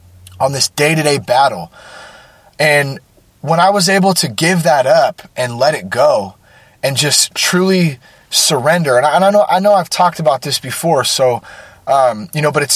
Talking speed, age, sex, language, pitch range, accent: 195 wpm, 30-49, male, English, 130-175 Hz, American